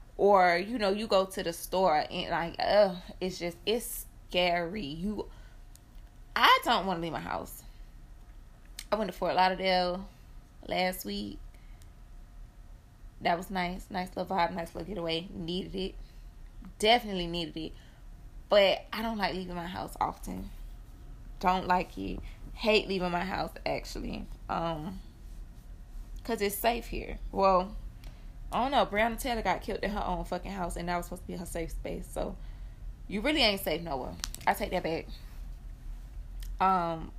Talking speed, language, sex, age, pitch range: 160 wpm, English, female, 20-39, 165-200 Hz